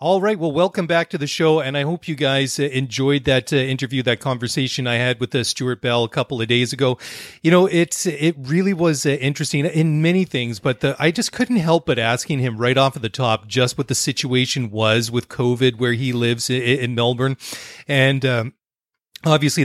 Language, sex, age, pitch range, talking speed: English, male, 30-49, 120-145 Hz, 215 wpm